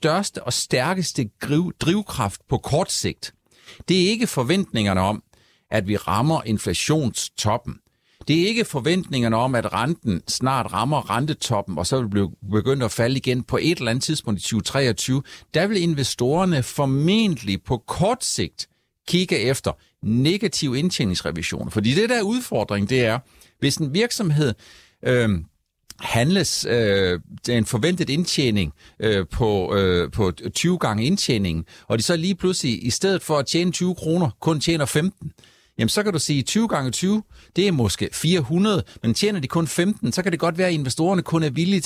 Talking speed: 165 wpm